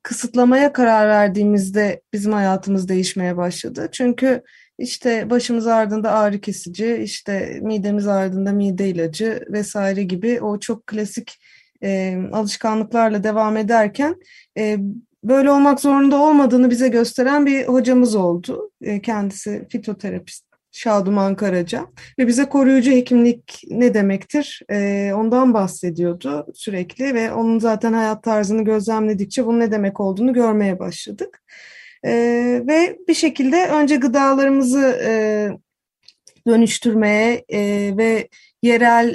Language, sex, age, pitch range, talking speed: Turkish, female, 30-49, 195-245 Hz, 115 wpm